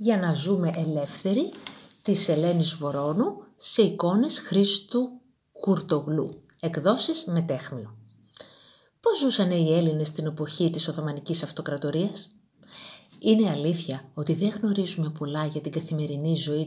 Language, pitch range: Greek, 145-200 Hz